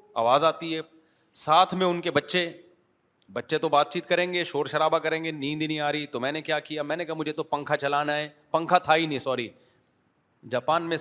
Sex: male